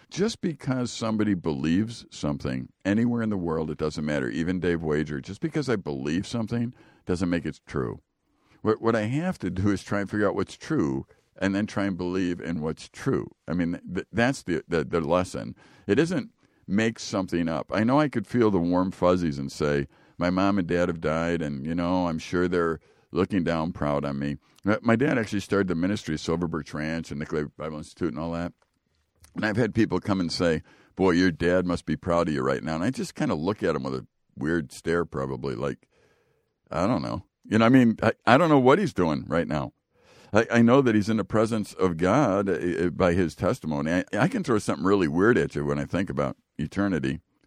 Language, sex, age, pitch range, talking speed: English, male, 50-69, 80-100 Hz, 220 wpm